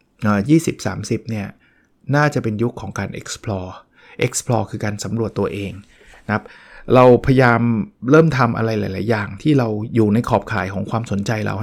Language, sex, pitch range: Thai, male, 110-140 Hz